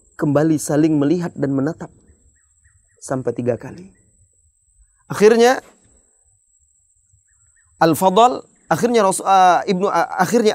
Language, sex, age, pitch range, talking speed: Indonesian, male, 30-49, 130-190 Hz, 90 wpm